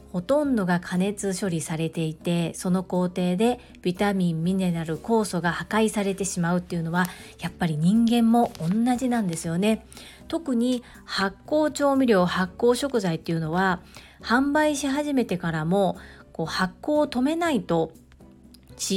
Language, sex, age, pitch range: Japanese, female, 40-59, 175-270 Hz